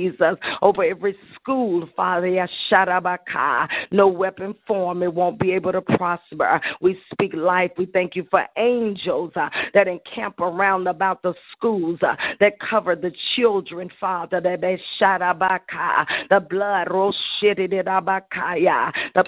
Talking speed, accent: 120 wpm, American